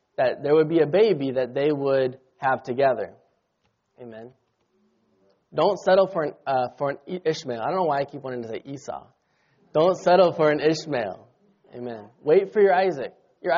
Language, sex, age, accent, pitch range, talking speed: English, male, 20-39, American, 145-195 Hz, 180 wpm